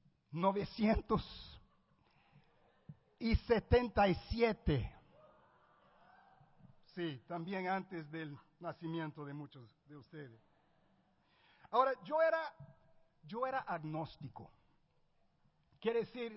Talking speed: 65 wpm